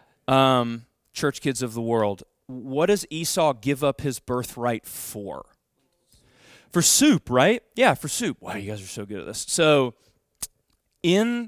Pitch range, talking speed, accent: 135-190 Hz, 155 wpm, American